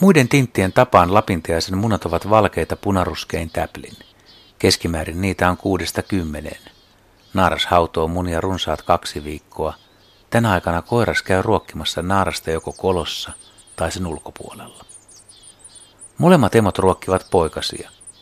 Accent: native